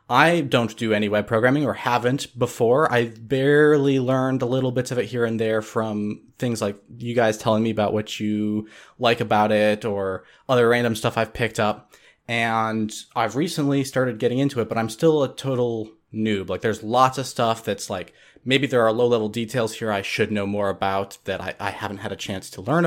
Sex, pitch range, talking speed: male, 110-130 Hz, 215 wpm